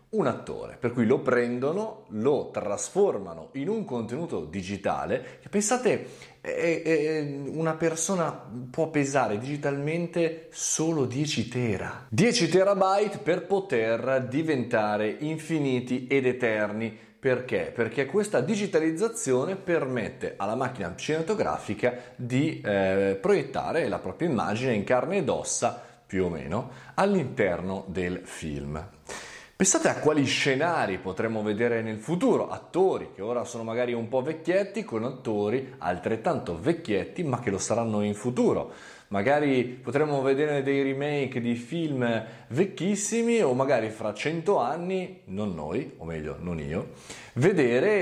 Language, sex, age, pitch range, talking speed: Italian, male, 30-49, 105-160 Hz, 125 wpm